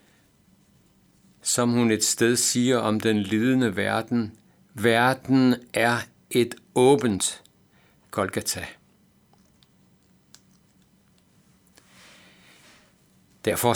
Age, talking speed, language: 60-79, 65 wpm, Danish